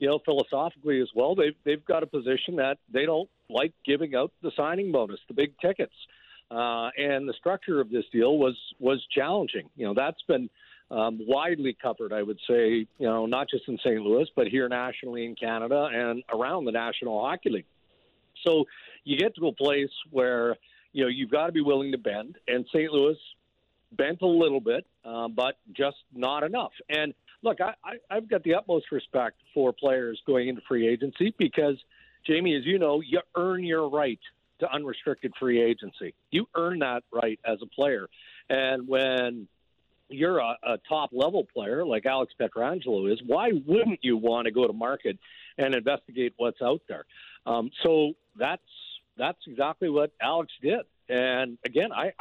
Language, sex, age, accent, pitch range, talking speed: English, male, 50-69, American, 120-155 Hz, 180 wpm